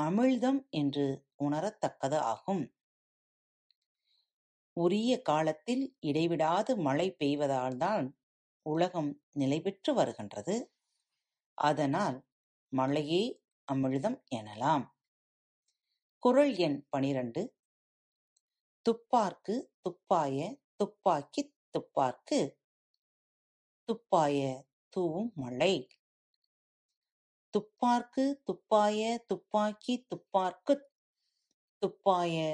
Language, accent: Tamil, native